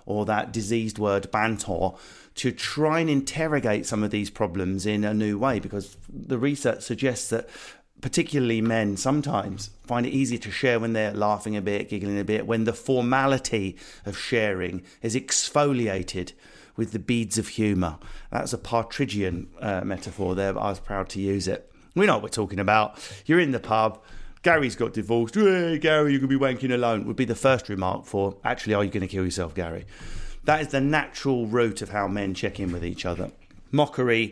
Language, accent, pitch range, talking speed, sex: English, British, 100-130 Hz, 195 wpm, male